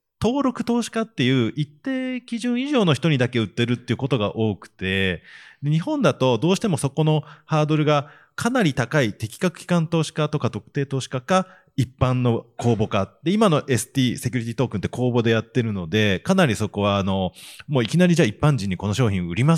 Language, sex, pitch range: Japanese, male, 100-150 Hz